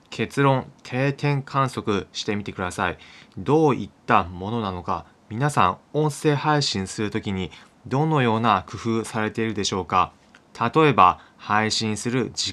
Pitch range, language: 100-140 Hz, Japanese